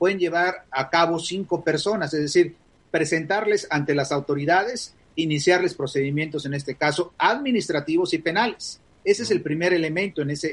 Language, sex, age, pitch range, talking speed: Spanish, male, 40-59, 135-170 Hz, 155 wpm